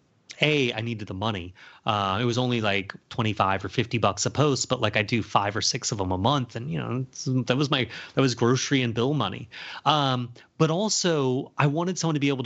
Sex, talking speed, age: male, 230 wpm, 30-49